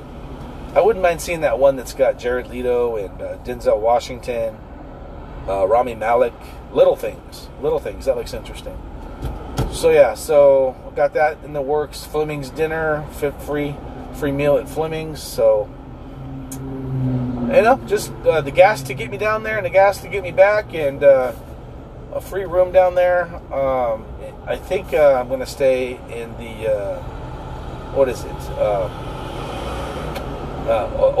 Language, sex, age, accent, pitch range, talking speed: English, male, 40-59, American, 125-200 Hz, 160 wpm